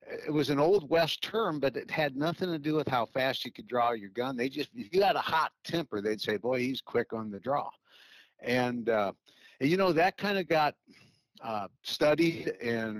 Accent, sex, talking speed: American, male, 215 wpm